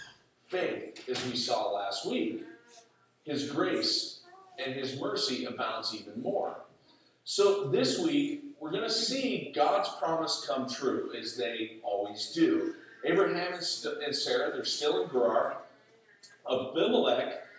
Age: 40-59